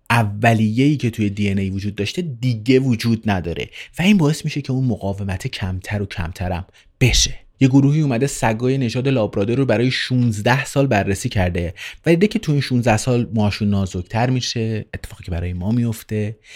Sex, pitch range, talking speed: male, 105-140 Hz, 175 wpm